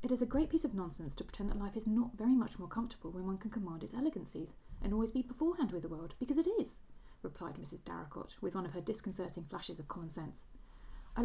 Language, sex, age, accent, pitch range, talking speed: English, female, 40-59, British, 175-255 Hz, 245 wpm